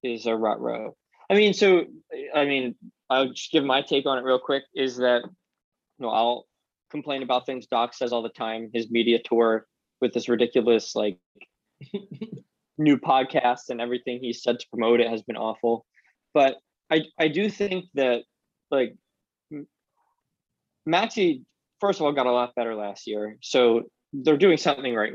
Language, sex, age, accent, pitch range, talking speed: English, male, 20-39, American, 120-175 Hz, 170 wpm